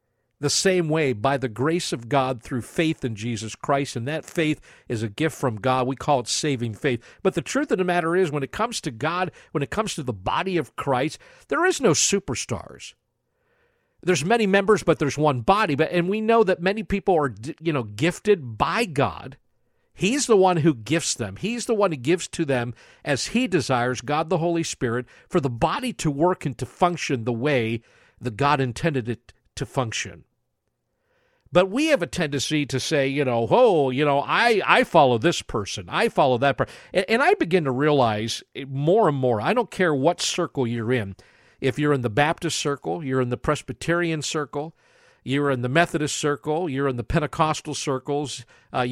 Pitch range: 130-180 Hz